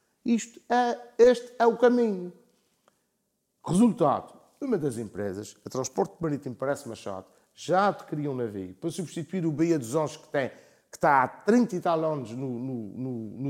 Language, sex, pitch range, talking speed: Portuguese, male, 130-180 Hz, 155 wpm